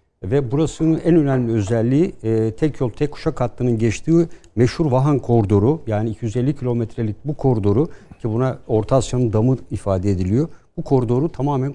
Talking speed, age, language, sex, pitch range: 155 wpm, 60-79, Turkish, male, 110-145 Hz